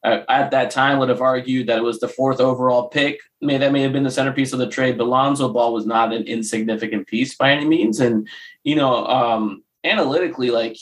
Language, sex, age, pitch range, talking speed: English, male, 20-39, 110-130 Hz, 240 wpm